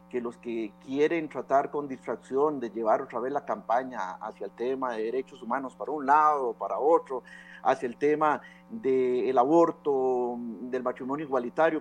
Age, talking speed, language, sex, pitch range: 50-69, 170 wpm, Spanish, male, 130-210 Hz